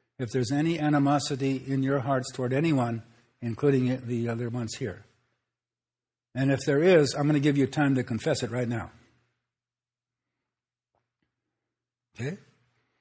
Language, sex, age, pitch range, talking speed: English, male, 60-79, 120-145 Hz, 140 wpm